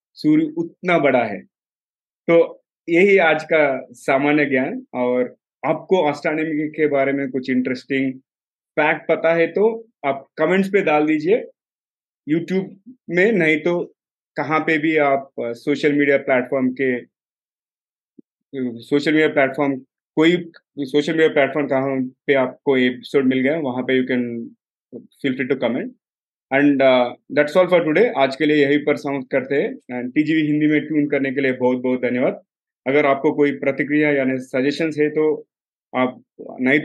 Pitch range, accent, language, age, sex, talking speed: 130-160 Hz, native, Hindi, 30-49, male, 150 wpm